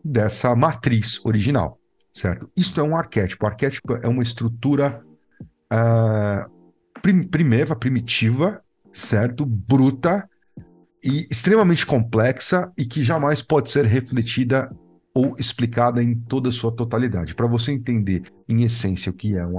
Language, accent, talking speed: Portuguese, Brazilian, 130 wpm